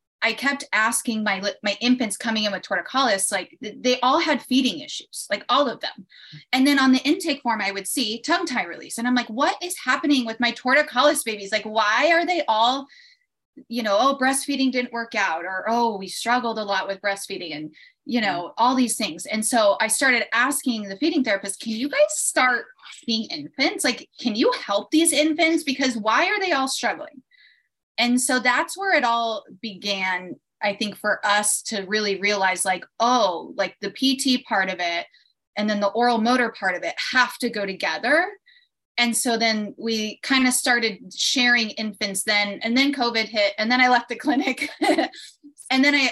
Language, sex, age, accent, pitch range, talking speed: English, female, 20-39, American, 205-265 Hz, 195 wpm